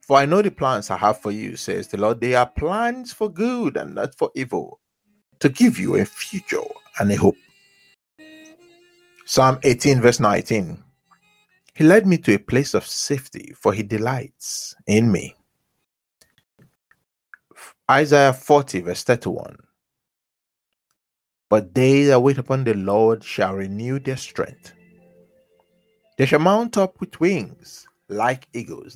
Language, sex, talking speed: English, male, 145 wpm